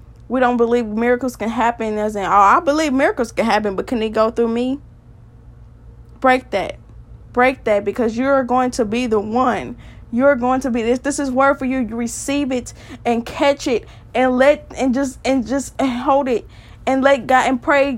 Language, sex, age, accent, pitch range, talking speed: English, female, 20-39, American, 200-260 Hz, 200 wpm